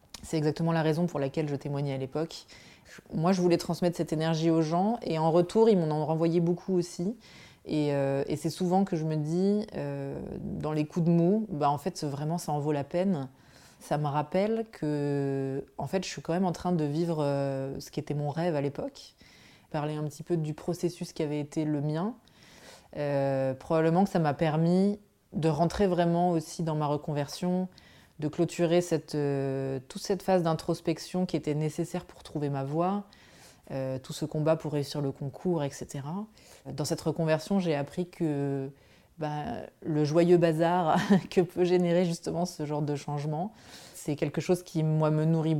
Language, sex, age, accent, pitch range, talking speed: French, female, 20-39, French, 150-180 Hz, 190 wpm